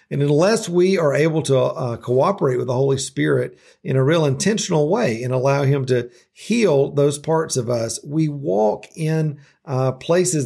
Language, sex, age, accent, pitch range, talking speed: English, male, 50-69, American, 125-150 Hz, 180 wpm